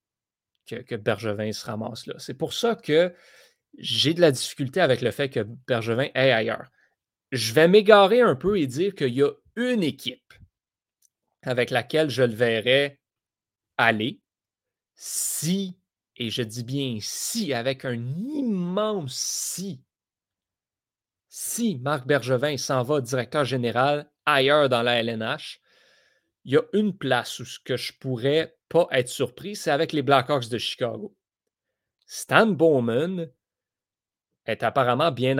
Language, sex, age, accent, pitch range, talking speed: French, male, 30-49, Canadian, 120-160 Hz, 140 wpm